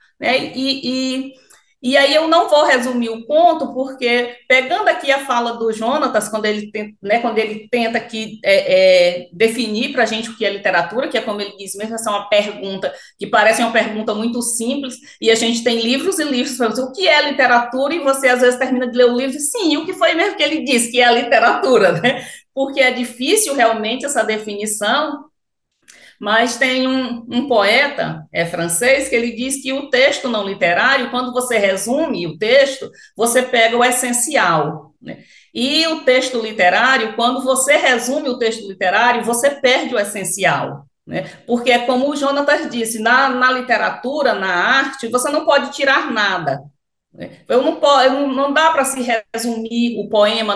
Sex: female